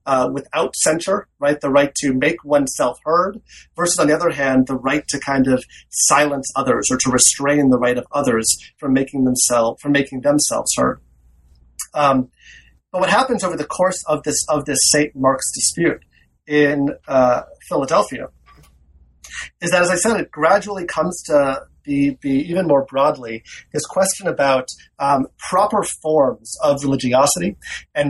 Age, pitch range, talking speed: 30-49, 130-165 Hz, 160 wpm